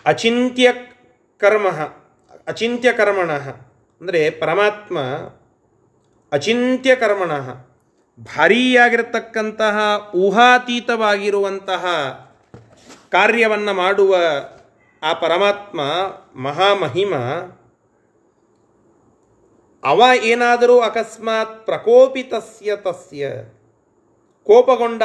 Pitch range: 150-225 Hz